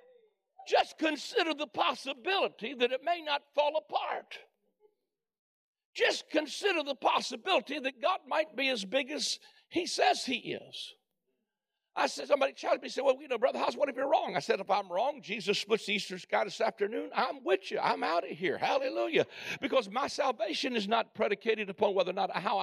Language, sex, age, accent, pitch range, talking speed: English, male, 60-79, American, 215-315 Hz, 190 wpm